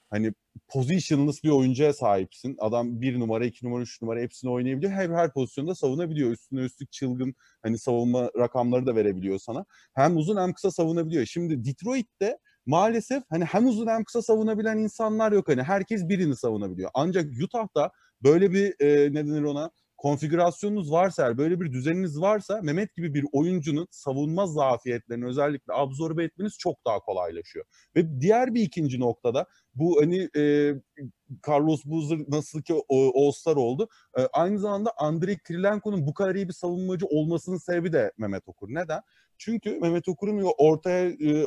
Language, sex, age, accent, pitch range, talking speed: Turkish, male, 30-49, native, 130-185 Hz, 155 wpm